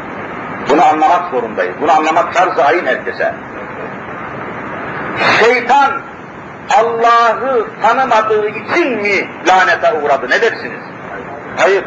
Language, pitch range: Turkish, 195-250 Hz